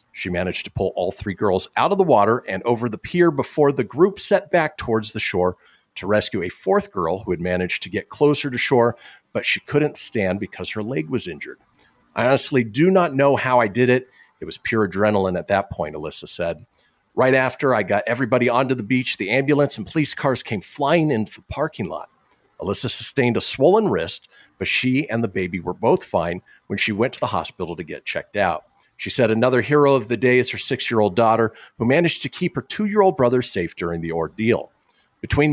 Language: English